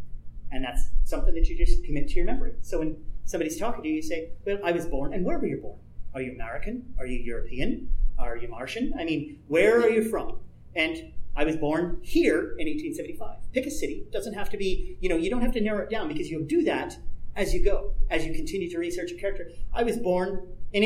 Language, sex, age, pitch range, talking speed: English, male, 40-59, 145-240 Hz, 240 wpm